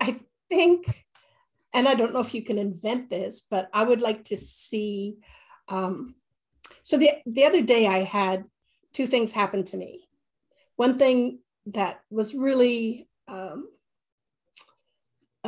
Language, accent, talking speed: English, American, 145 wpm